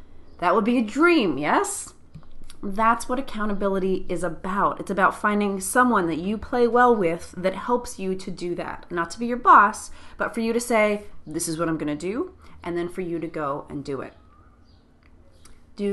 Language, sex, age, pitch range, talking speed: English, female, 30-49, 175-235 Hz, 195 wpm